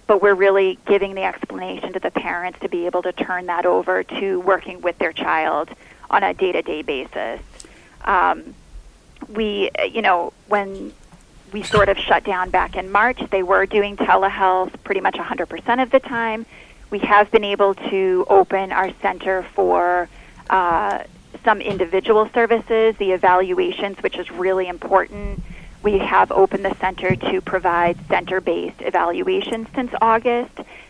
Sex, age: female, 30-49